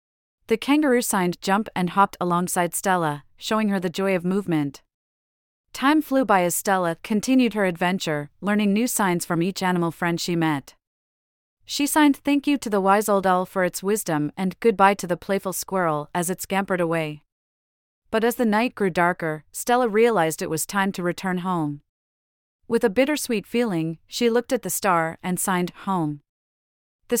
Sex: female